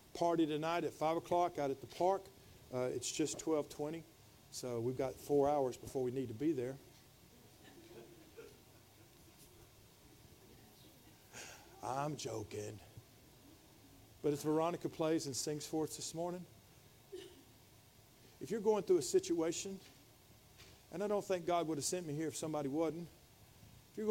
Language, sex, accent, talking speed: English, male, American, 145 wpm